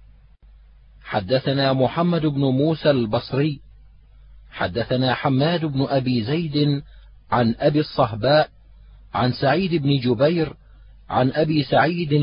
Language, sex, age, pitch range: Arabic, male, 40-59, 120-150 Hz